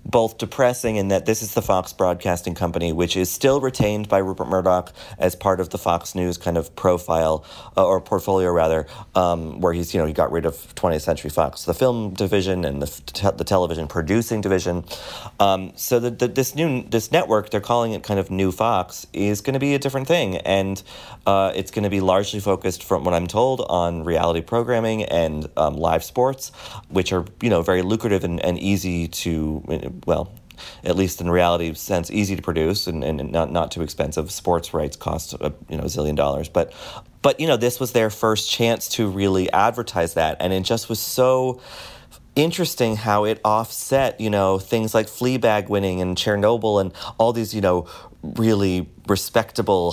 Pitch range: 85-110 Hz